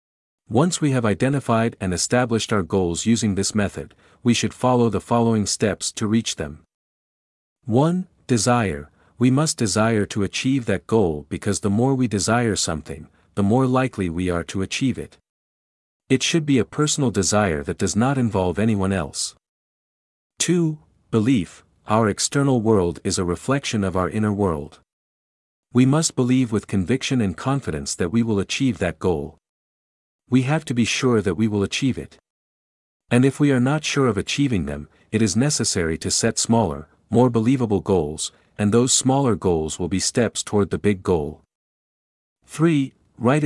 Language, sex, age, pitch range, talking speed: English, male, 50-69, 95-125 Hz, 165 wpm